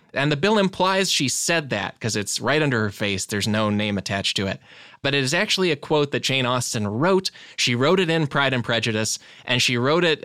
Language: English